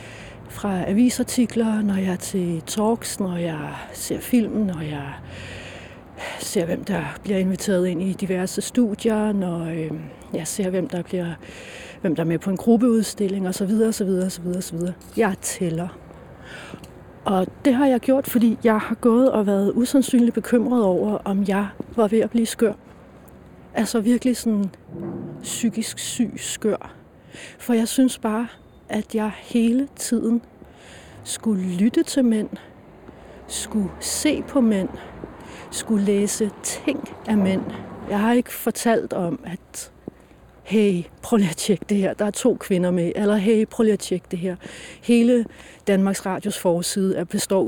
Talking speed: 155 wpm